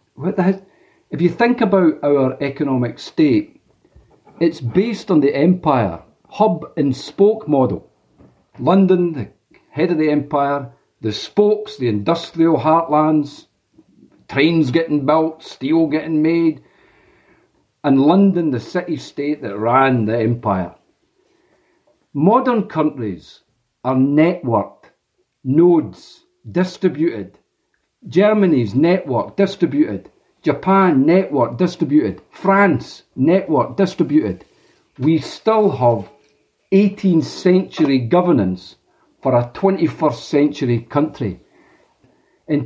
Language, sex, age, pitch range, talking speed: English, male, 50-69, 130-180 Hz, 95 wpm